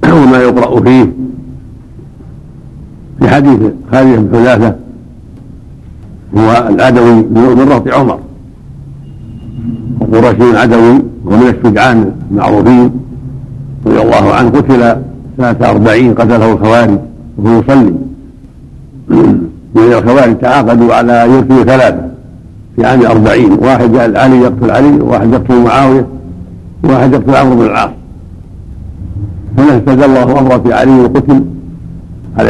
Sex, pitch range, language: male, 115-130 Hz, Arabic